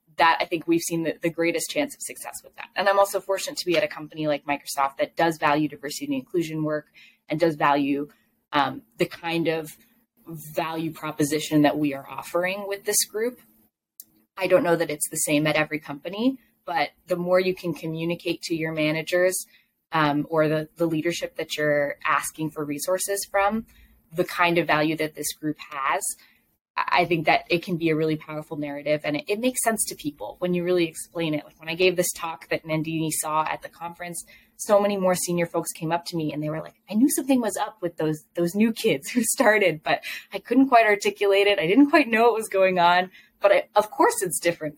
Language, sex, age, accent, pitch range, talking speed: English, female, 10-29, American, 155-205 Hz, 220 wpm